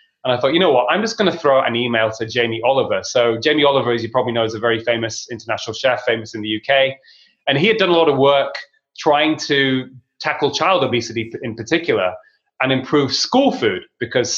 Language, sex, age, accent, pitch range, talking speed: English, male, 30-49, British, 115-150 Hz, 220 wpm